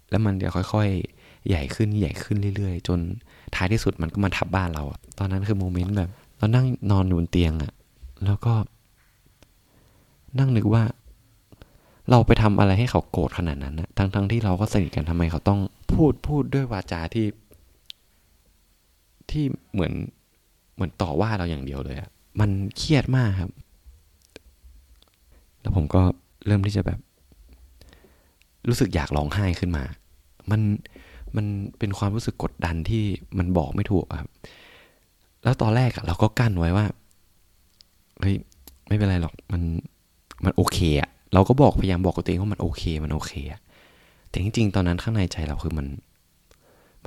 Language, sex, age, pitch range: Thai, male, 20-39, 80-105 Hz